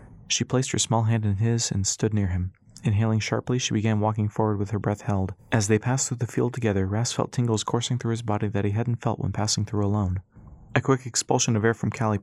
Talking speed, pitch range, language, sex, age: 245 wpm, 100-115 Hz, English, male, 30-49